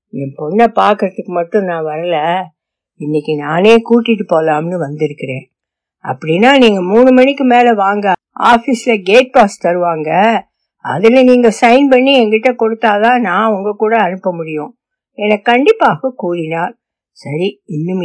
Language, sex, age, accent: Tamil, female, 60-79, native